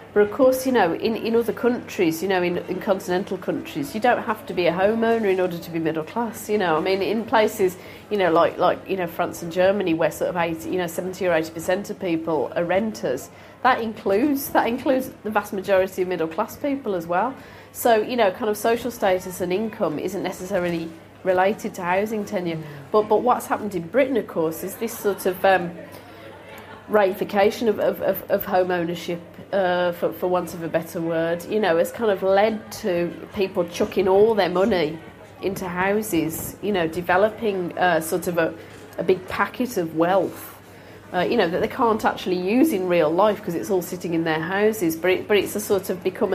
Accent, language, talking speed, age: British, English, 210 wpm, 30-49